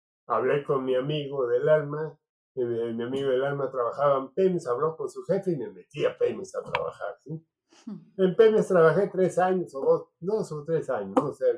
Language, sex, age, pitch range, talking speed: Spanish, male, 50-69, 140-200 Hz, 200 wpm